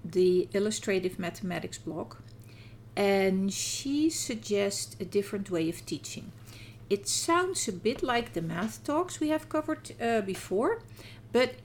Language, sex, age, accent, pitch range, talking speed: English, female, 50-69, Dutch, 155-230 Hz, 135 wpm